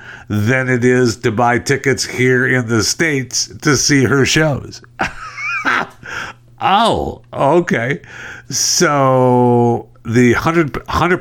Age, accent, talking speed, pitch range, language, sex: 60-79, American, 100 wpm, 95-125 Hz, English, male